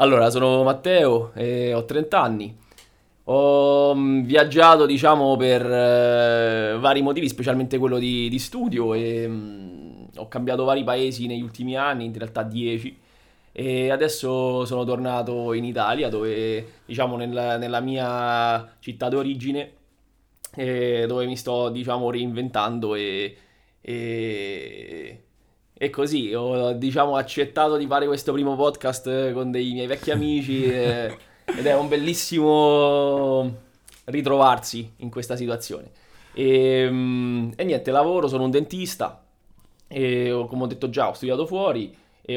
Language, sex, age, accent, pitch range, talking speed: Italian, male, 20-39, native, 115-135 Hz, 135 wpm